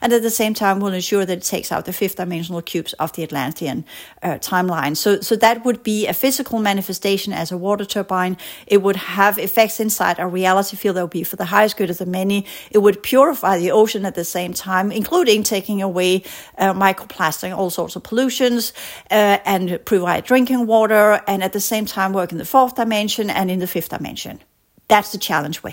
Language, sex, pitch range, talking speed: English, female, 180-215 Hz, 215 wpm